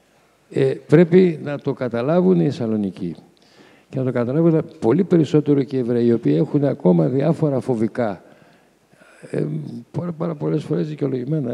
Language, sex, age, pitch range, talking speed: Greek, male, 60-79, 120-160 Hz, 150 wpm